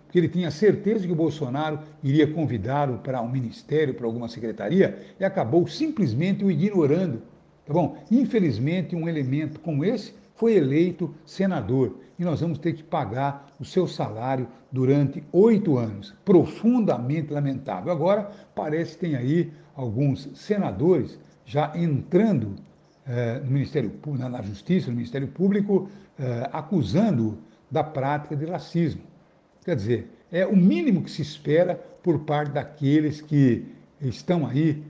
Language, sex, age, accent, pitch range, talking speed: Portuguese, male, 60-79, Brazilian, 135-175 Hz, 145 wpm